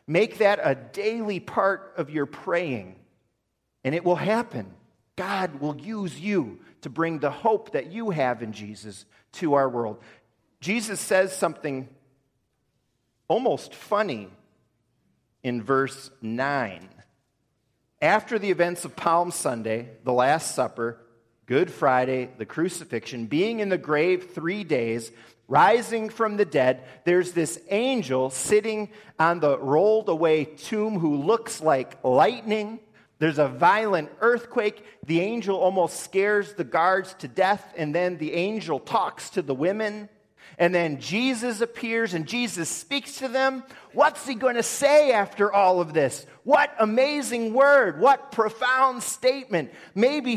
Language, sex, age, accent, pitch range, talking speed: English, male, 40-59, American, 135-220 Hz, 140 wpm